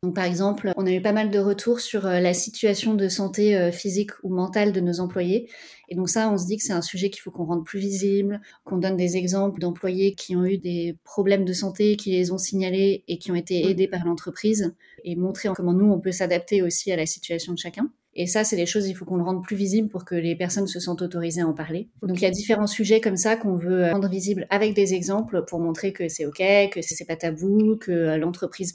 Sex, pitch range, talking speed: female, 175-200 Hz, 255 wpm